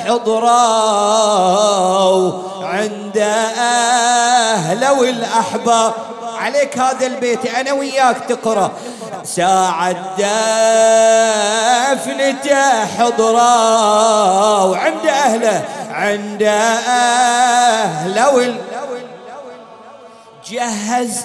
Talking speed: 55 wpm